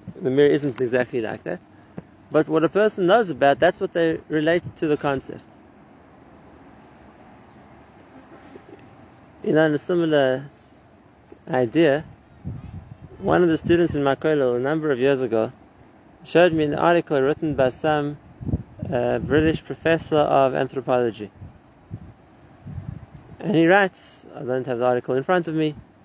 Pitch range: 135-165 Hz